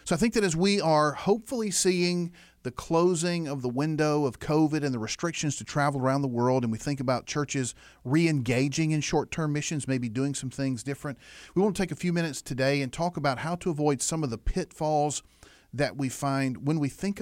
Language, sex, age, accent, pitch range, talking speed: English, male, 40-59, American, 125-170 Hz, 215 wpm